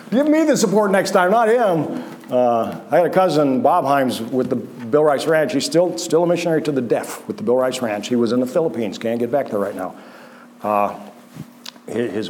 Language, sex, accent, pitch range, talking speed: English, male, American, 115-180 Hz, 225 wpm